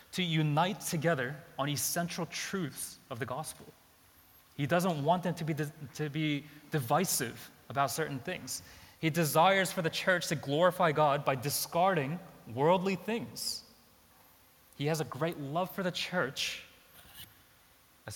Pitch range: 125-165 Hz